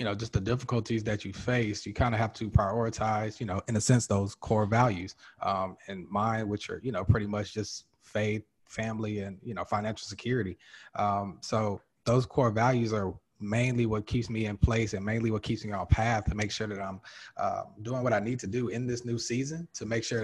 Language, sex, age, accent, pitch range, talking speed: English, male, 20-39, American, 105-120 Hz, 230 wpm